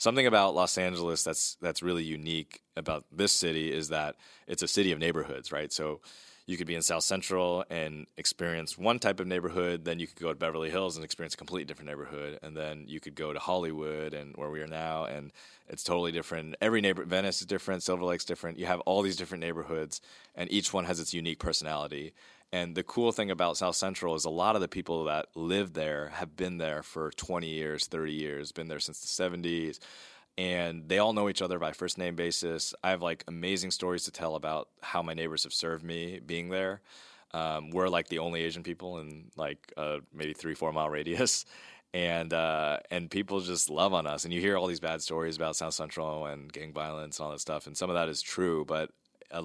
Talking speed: 225 wpm